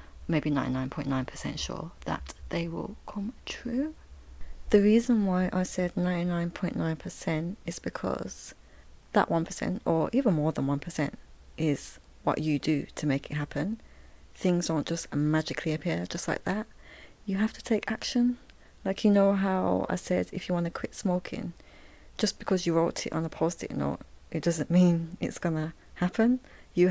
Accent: British